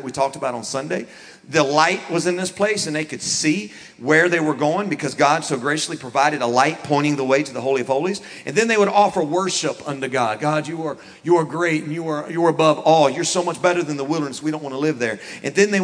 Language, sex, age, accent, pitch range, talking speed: English, male, 40-59, American, 150-215 Hz, 265 wpm